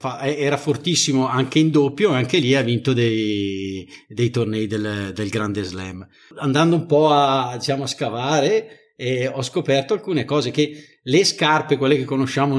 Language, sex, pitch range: Italian, male, 115-150 Hz